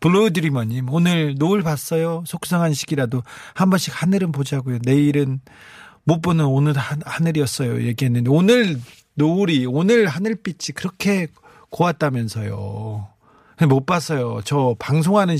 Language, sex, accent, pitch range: Korean, male, native, 130-165 Hz